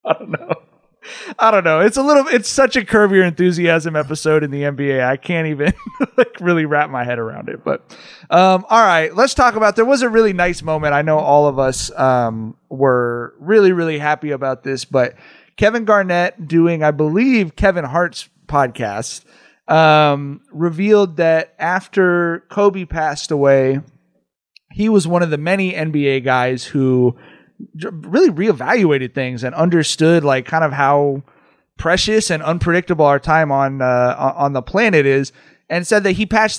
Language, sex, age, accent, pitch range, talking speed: English, male, 30-49, American, 135-185 Hz, 170 wpm